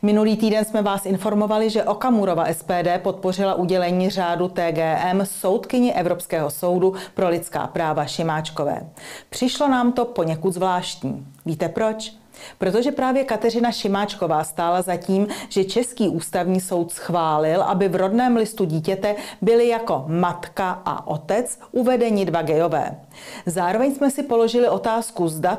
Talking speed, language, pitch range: 135 wpm, Czech, 175-215 Hz